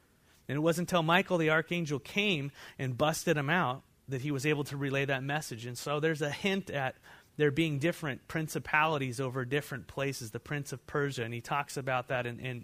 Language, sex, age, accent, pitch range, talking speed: English, male, 30-49, American, 125-160 Hz, 210 wpm